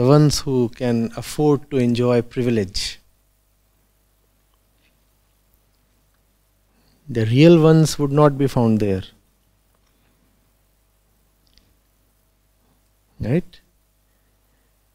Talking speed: 70 wpm